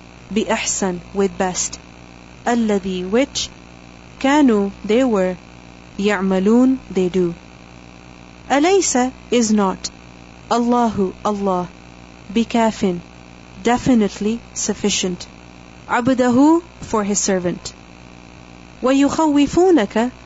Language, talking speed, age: English, 70 wpm, 30-49